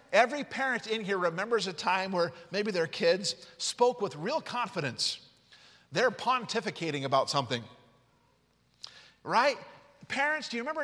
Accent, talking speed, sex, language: American, 135 wpm, male, English